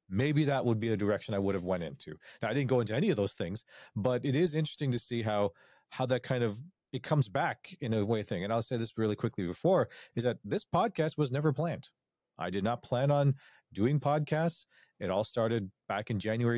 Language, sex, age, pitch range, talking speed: English, male, 30-49, 105-135 Hz, 235 wpm